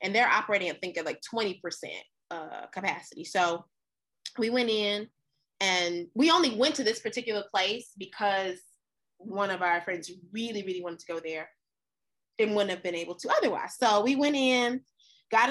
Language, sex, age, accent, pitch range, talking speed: English, female, 20-39, American, 195-265 Hz, 175 wpm